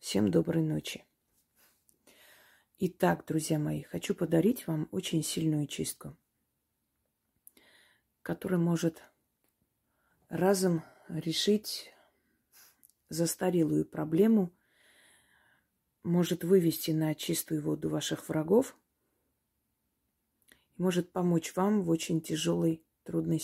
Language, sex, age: Russian, female, 30-49